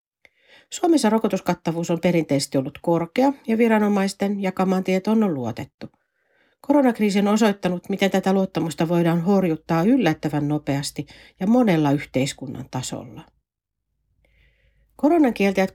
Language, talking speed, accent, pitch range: Finnish, 100 wpm, native, 155-210 Hz